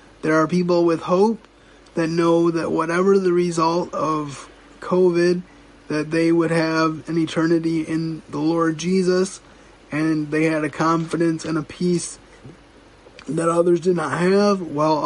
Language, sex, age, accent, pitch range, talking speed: English, male, 20-39, American, 150-165 Hz, 145 wpm